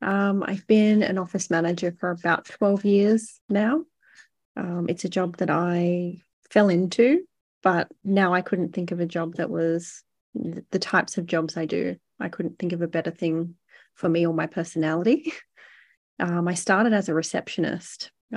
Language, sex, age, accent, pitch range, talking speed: English, female, 30-49, Australian, 170-195 Hz, 175 wpm